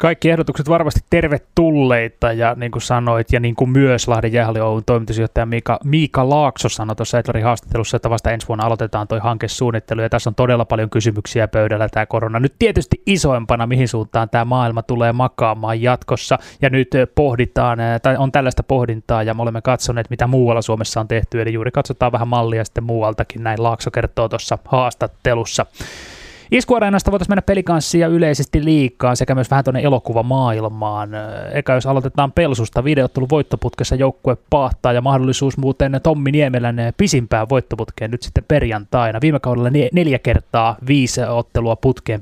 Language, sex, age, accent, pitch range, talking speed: Finnish, male, 20-39, native, 115-135 Hz, 160 wpm